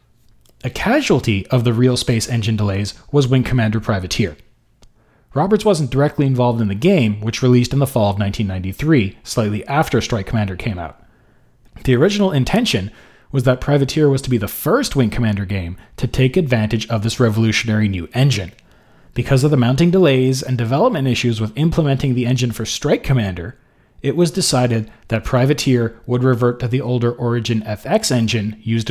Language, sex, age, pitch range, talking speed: English, male, 30-49, 110-135 Hz, 170 wpm